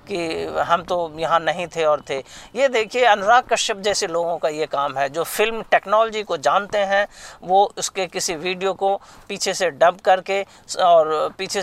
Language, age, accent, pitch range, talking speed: Hindi, 50-69, native, 180-205 Hz, 180 wpm